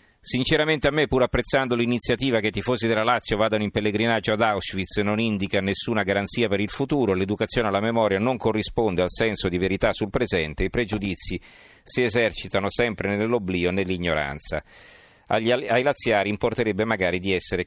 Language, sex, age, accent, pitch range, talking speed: Italian, male, 40-59, native, 95-115 Hz, 165 wpm